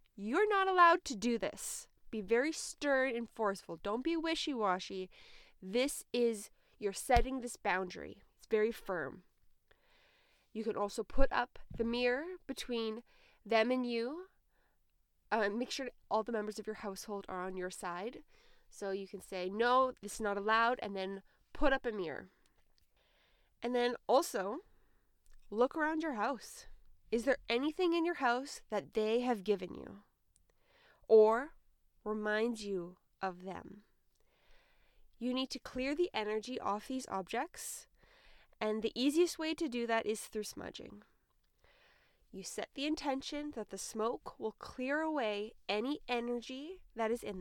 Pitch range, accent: 205-280 Hz, American